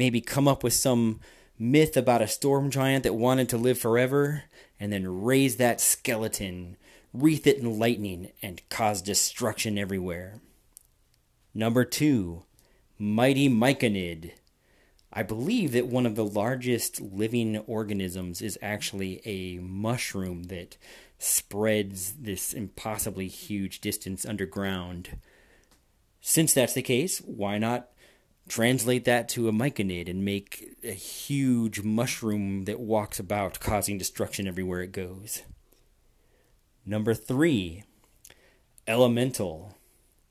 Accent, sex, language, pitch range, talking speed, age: American, male, English, 100-125 Hz, 120 wpm, 30-49